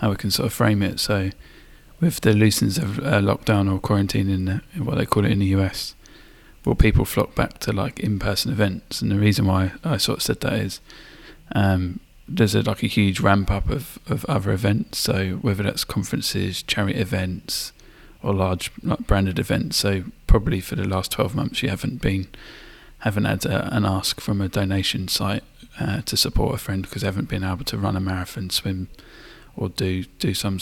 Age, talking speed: 20-39, 200 wpm